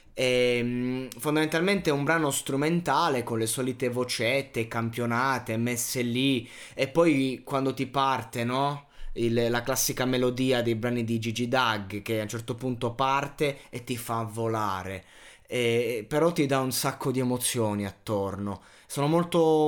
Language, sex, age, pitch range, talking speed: Italian, male, 20-39, 115-145 Hz, 150 wpm